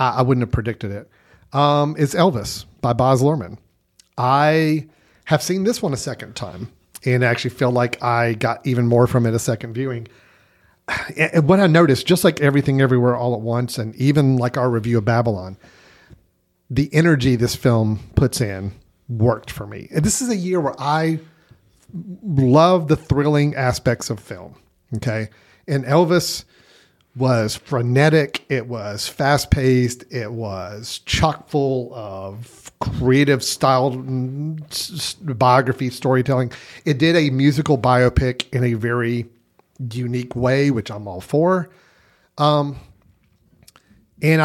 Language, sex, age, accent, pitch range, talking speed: English, male, 40-59, American, 120-145 Hz, 140 wpm